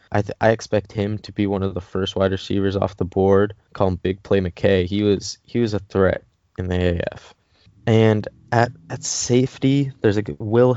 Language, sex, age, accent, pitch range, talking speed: English, male, 20-39, American, 95-115 Hz, 205 wpm